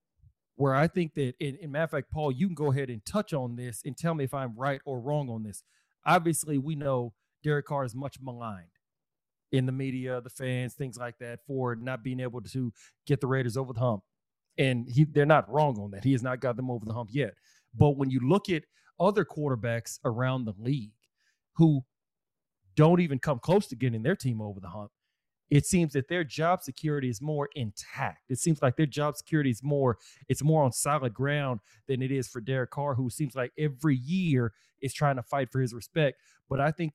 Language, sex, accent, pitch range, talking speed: English, male, American, 125-150 Hz, 220 wpm